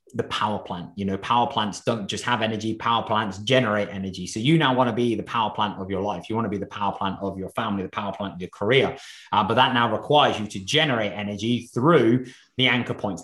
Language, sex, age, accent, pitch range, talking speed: English, male, 20-39, British, 110-135 Hz, 255 wpm